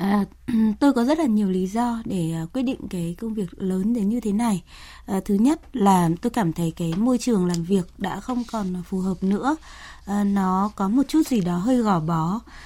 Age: 20-39